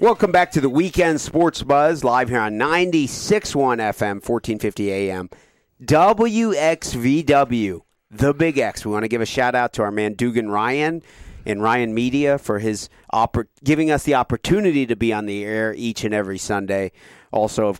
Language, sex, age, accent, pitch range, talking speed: English, male, 40-59, American, 105-140 Hz, 165 wpm